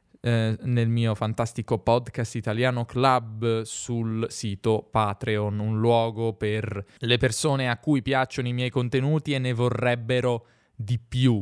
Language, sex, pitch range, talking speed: Italian, male, 110-130 Hz, 130 wpm